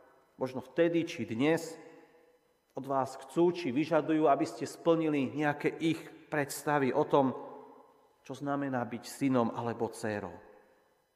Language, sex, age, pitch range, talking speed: Slovak, male, 40-59, 135-180 Hz, 125 wpm